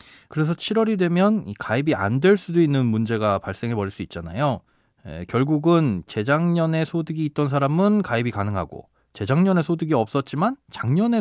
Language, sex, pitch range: Korean, male, 115-160 Hz